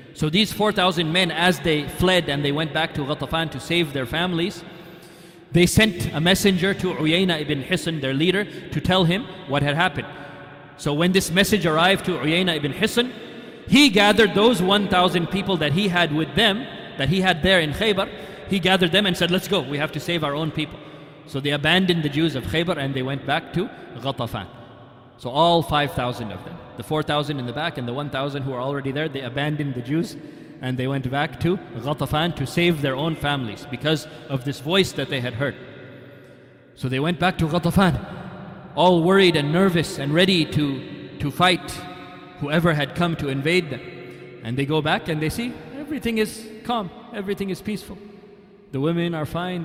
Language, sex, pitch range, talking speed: English, male, 145-185 Hz, 195 wpm